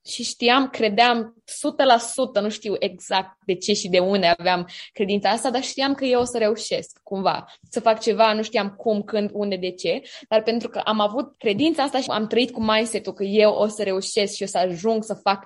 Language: Romanian